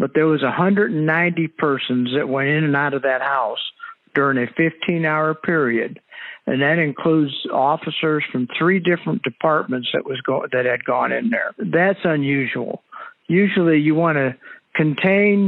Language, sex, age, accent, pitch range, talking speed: English, male, 60-79, American, 135-165 Hz, 155 wpm